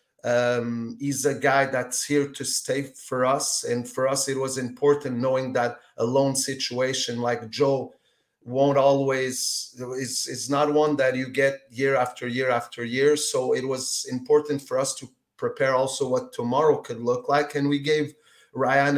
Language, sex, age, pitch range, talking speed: English, male, 30-49, 125-140 Hz, 170 wpm